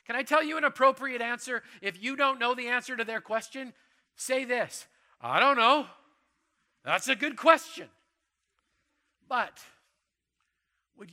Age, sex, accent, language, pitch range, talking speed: 40-59, male, American, English, 195-255 Hz, 145 wpm